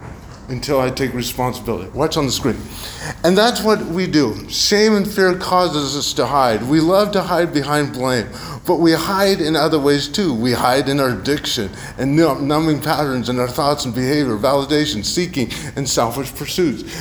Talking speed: 180 wpm